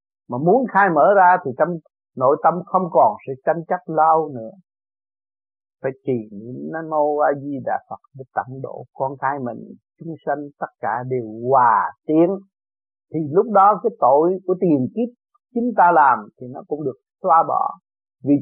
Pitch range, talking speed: 135-185 Hz, 180 wpm